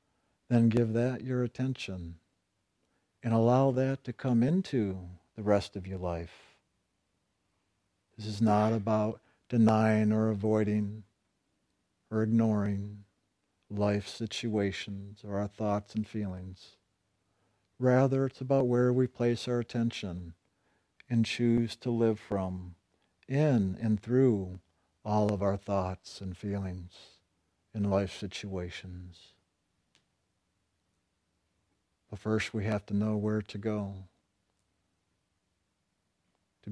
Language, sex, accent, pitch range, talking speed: English, male, American, 95-115 Hz, 110 wpm